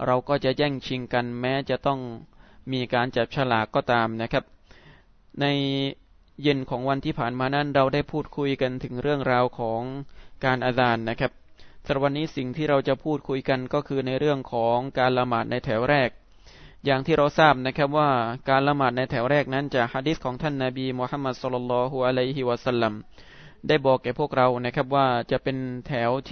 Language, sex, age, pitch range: Thai, male, 20-39, 125-145 Hz